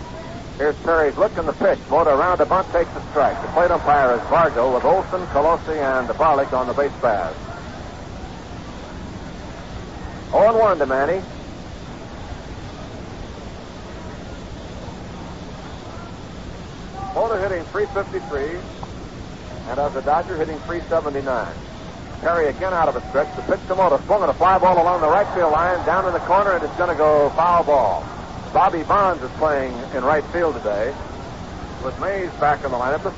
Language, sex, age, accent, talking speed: English, male, 60-79, American, 150 wpm